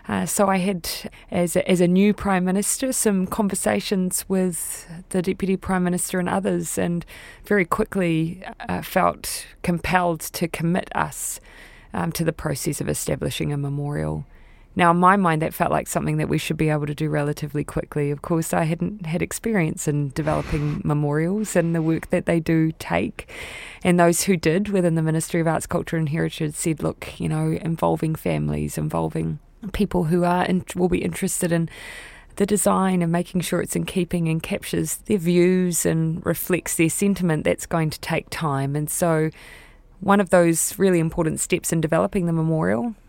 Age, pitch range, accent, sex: 20-39, 155-185 Hz, Australian, female